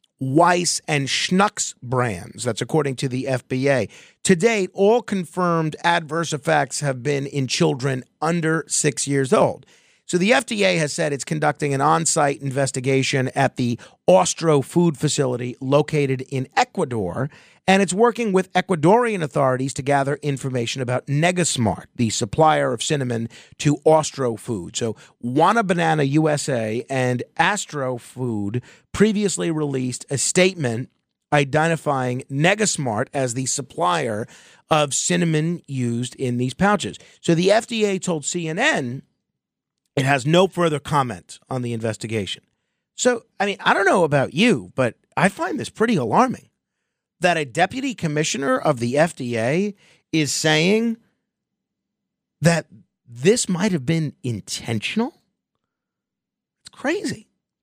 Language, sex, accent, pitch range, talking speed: English, male, American, 130-175 Hz, 130 wpm